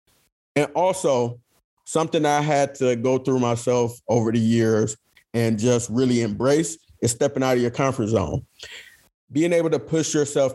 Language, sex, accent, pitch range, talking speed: English, male, American, 115-140 Hz, 160 wpm